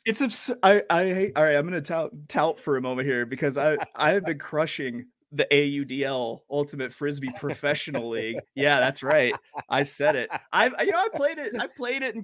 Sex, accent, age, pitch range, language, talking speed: male, American, 20-39, 120-165 Hz, English, 210 wpm